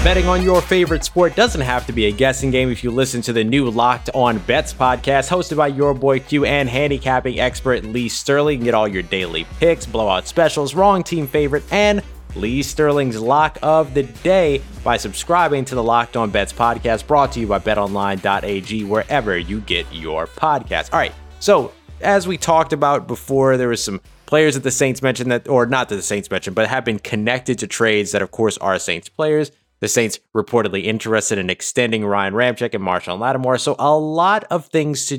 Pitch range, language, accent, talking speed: 115-150 Hz, English, American, 205 wpm